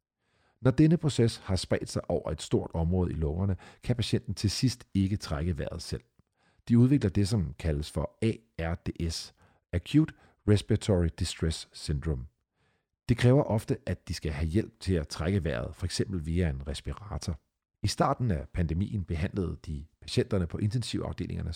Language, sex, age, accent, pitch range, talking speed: Danish, male, 50-69, native, 85-115 Hz, 155 wpm